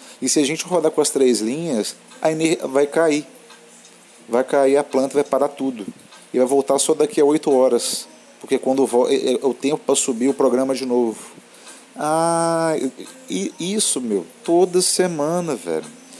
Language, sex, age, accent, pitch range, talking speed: English, male, 40-59, Brazilian, 120-160 Hz, 165 wpm